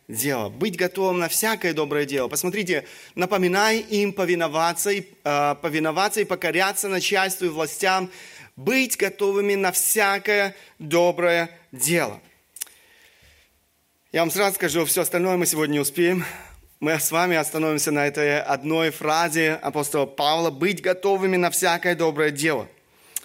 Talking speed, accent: 125 wpm, native